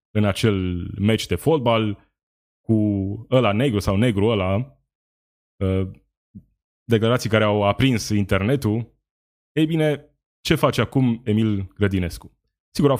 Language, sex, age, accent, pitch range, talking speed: Romanian, male, 20-39, native, 100-130 Hz, 115 wpm